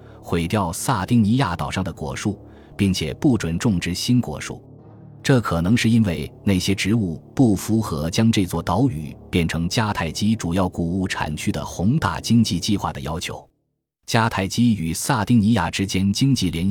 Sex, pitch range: male, 85-115 Hz